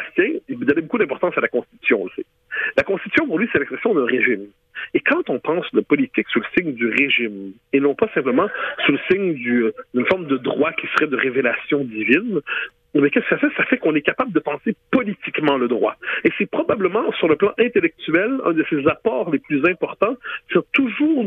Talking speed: 210 wpm